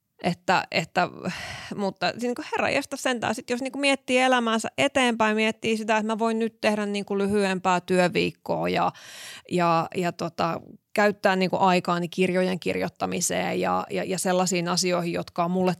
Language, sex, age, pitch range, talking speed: Finnish, female, 20-39, 170-210 Hz, 155 wpm